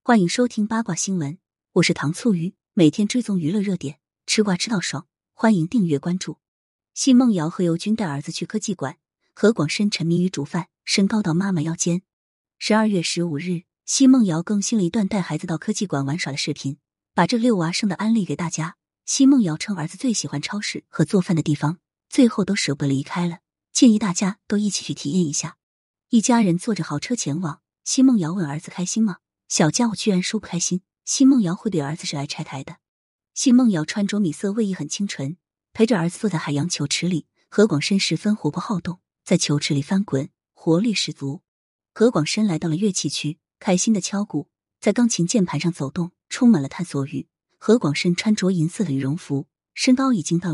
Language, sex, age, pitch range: Chinese, female, 20-39, 155-210 Hz